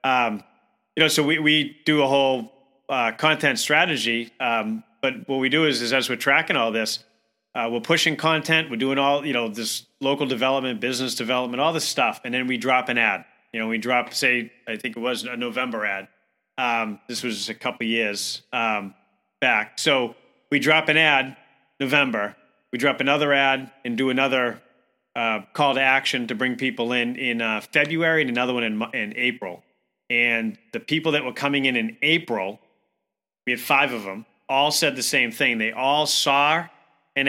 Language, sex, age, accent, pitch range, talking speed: English, male, 30-49, American, 120-145 Hz, 195 wpm